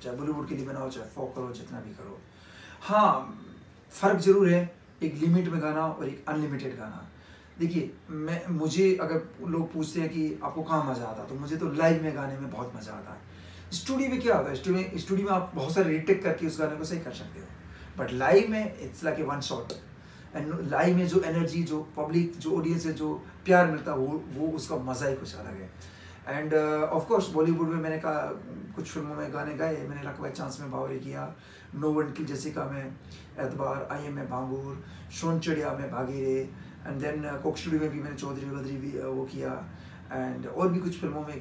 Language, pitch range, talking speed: Hindi, 135-165 Hz, 210 wpm